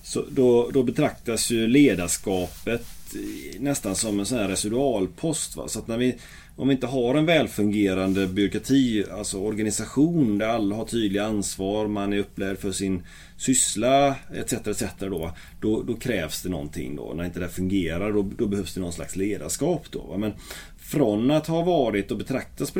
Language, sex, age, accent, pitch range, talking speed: Swedish, male, 30-49, native, 95-125 Hz, 175 wpm